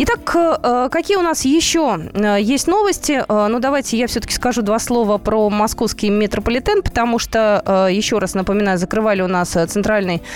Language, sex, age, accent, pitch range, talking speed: Russian, female, 20-39, native, 200-260 Hz, 150 wpm